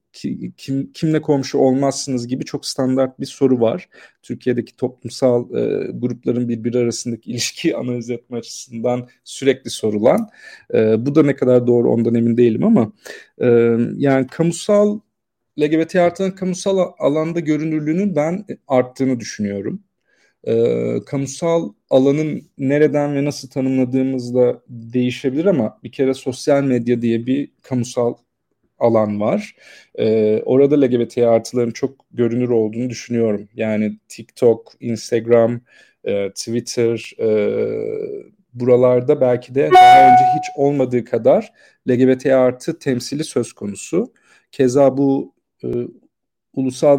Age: 40-59